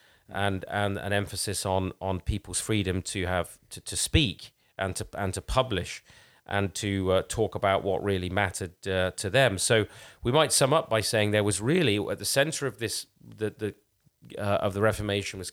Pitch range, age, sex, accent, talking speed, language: 95-120 Hz, 30-49, male, British, 195 wpm, English